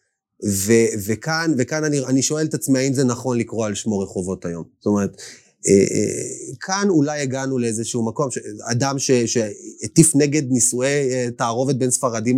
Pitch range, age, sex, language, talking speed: 115-150 Hz, 30-49, male, Hebrew, 170 wpm